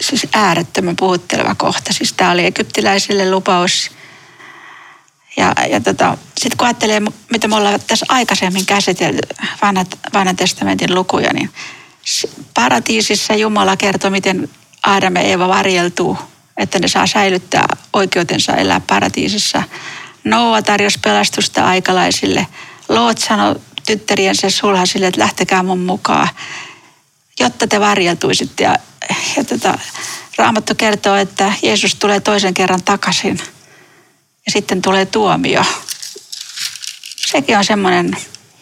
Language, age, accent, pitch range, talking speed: Finnish, 40-59, native, 185-215 Hz, 110 wpm